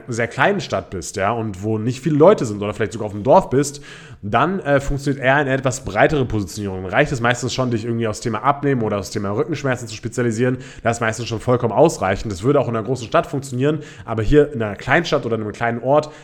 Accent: German